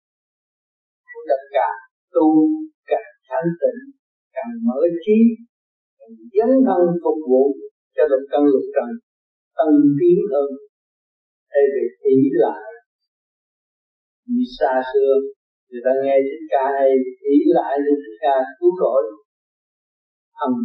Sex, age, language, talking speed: male, 50-69, Vietnamese, 135 wpm